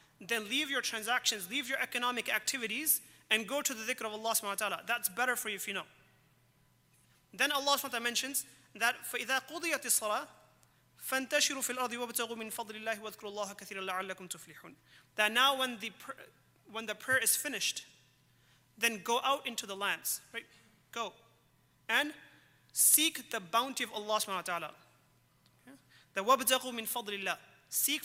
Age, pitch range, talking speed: 30-49, 210-270 Hz, 170 wpm